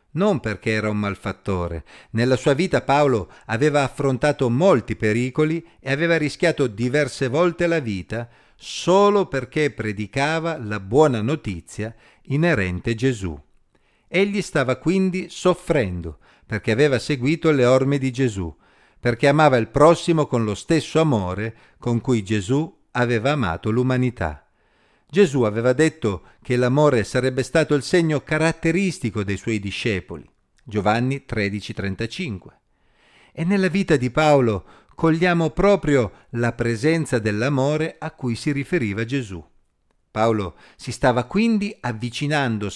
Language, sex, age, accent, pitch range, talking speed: Italian, male, 50-69, native, 110-150 Hz, 125 wpm